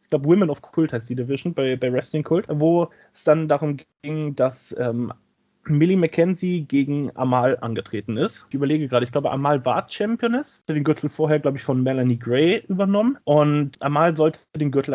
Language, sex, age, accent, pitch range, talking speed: German, male, 20-39, German, 130-155 Hz, 195 wpm